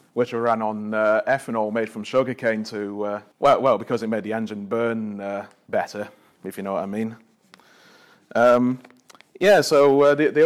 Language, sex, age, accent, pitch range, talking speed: English, male, 30-49, British, 105-120 Hz, 190 wpm